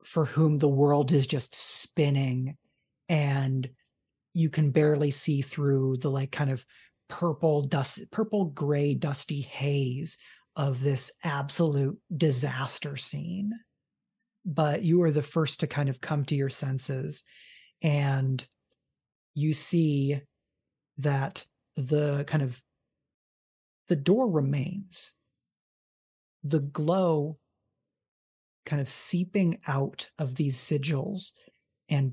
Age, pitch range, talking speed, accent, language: 30-49, 135-160 Hz, 110 wpm, American, English